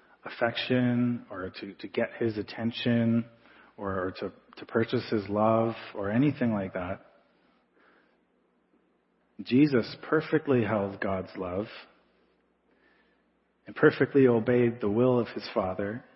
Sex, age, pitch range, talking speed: male, 30-49, 105-125 Hz, 115 wpm